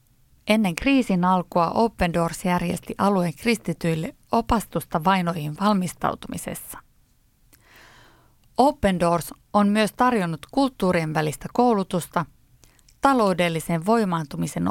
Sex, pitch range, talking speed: female, 165-220 Hz, 85 wpm